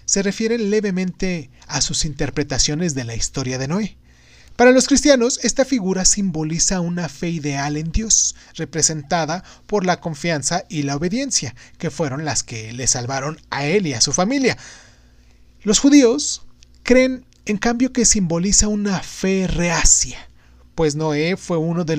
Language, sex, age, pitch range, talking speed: Spanish, male, 30-49, 140-190 Hz, 155 wpm